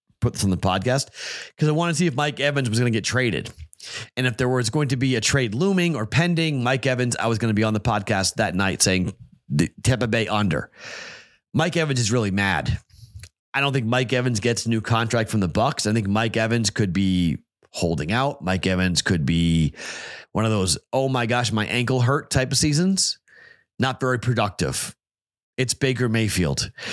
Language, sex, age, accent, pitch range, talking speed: English, male, 30-49, American, 105-130 Hz, 210 wpm